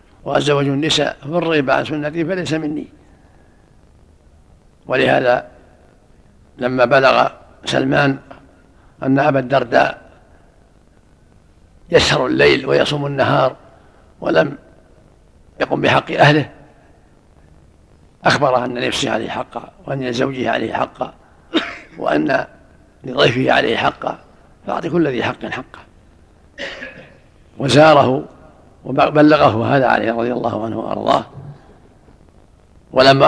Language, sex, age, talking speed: Arabic, male, 60-79, 90 wpm